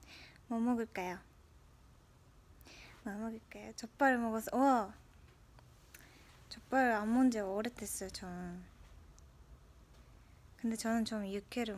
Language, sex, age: Indonesian, female, 20-39